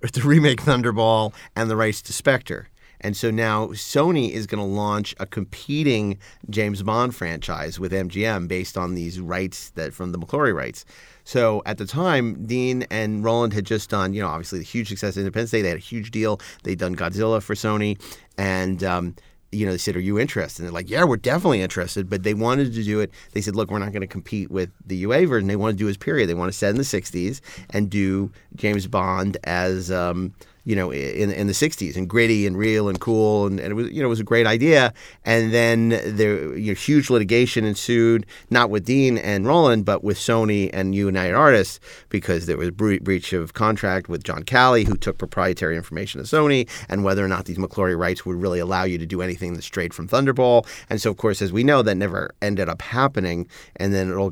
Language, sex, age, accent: English, male, 40-59, American